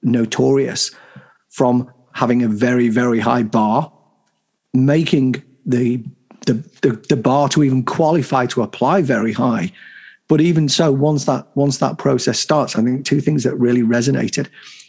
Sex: male